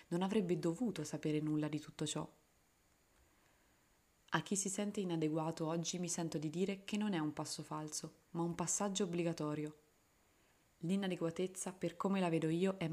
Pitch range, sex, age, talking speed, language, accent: 165-195 Hz, female, 20-39, 160 wpm, Italian, native